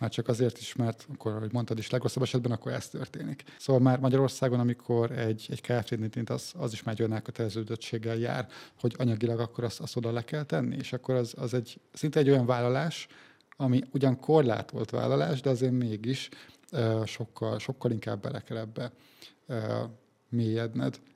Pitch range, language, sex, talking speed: 115-130 Hz, Hungarian, male, 170 wpm